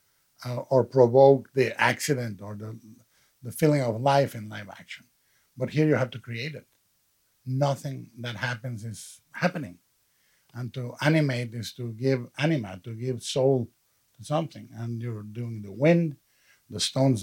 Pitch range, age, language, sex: 120-145 Hz, 50-69, English, male